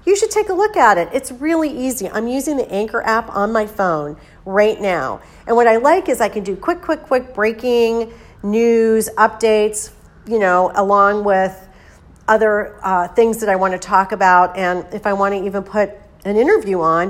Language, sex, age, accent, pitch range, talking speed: English, female, 40-59, American, 190-255 Hz, 200 wpm